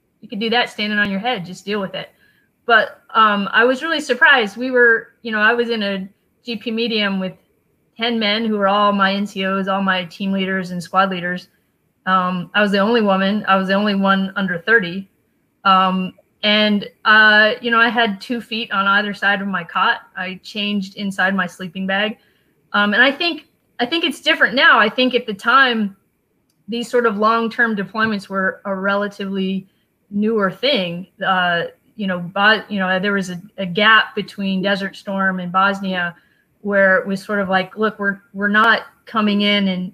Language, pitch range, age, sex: English, 190-225 Hz, 30-49, female